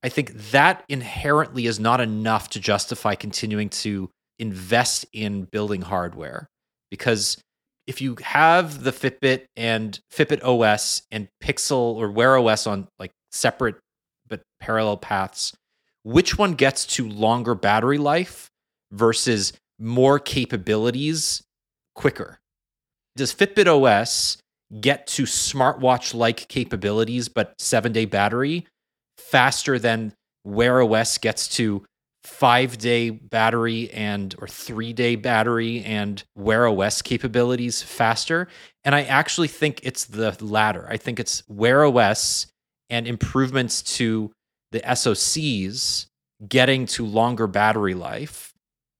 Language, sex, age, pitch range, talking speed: English, male, 30-49, 105-130 Hz, 120 wpm